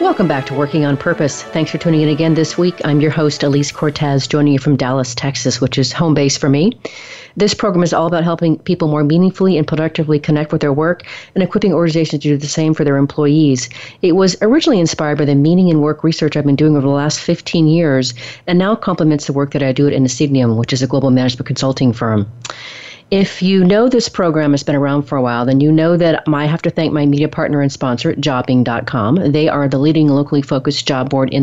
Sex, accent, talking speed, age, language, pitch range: female, American, 235 wpm, 40-59, English, 135-165 Hz